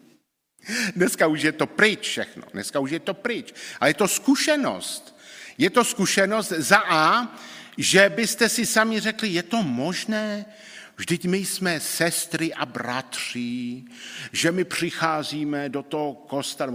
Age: 50-69